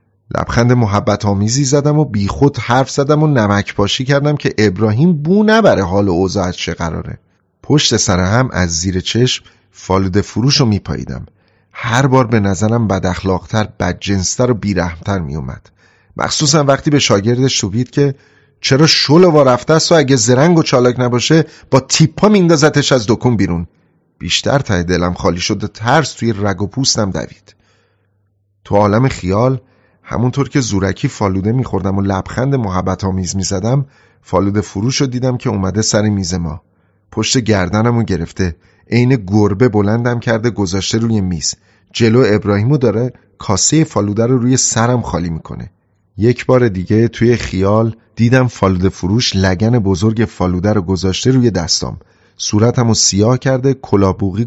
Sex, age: male, 30-49